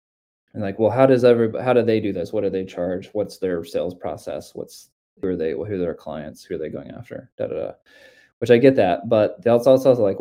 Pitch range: 95-120 Hz